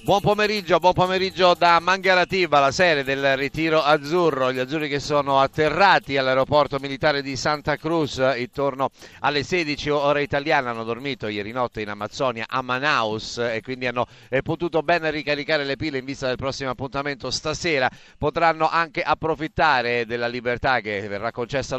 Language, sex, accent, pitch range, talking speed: Italian, male, native, 120-145 Hz, 155 wpm